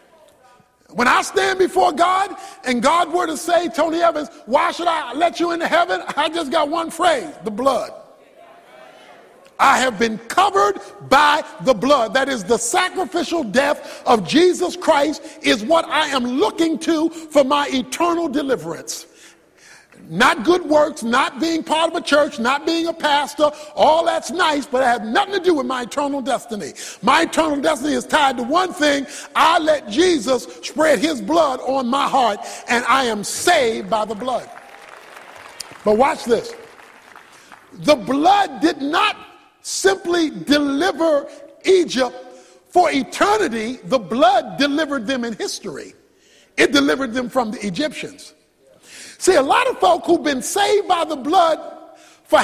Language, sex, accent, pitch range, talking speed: English, male, American, 270-345 Hz, 155 wpm